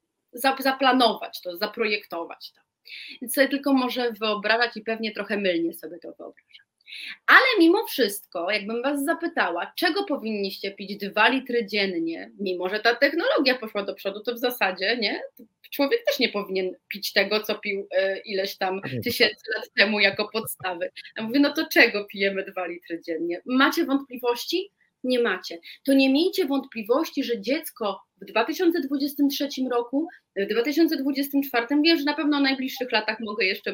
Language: Polish